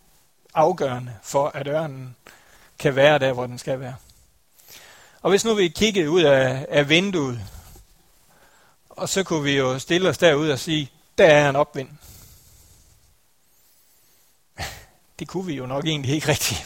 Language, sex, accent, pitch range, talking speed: Danish, male, native, 130-170 Hz, 150 wpm